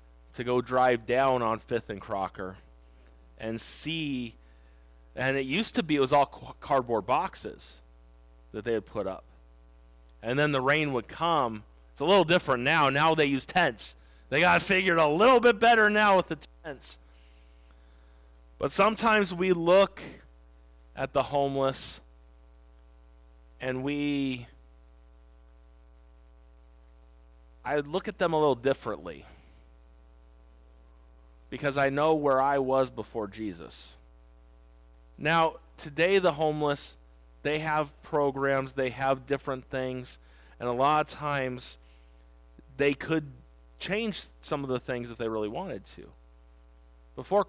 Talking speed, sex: 130 wpm, male